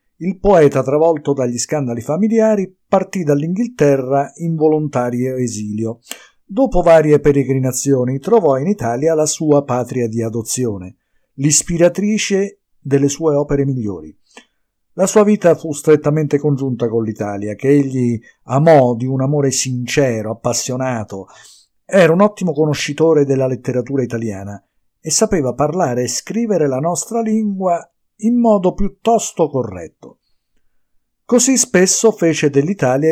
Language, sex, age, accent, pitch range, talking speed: Italian, male, 50-69, native, 130-185 Hz, 120 wpm